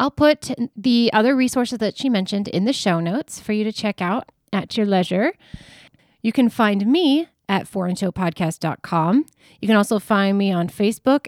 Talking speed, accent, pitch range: 175 wpm, American, 190-250 Hz